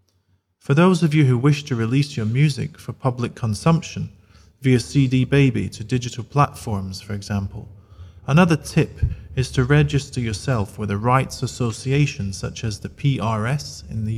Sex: male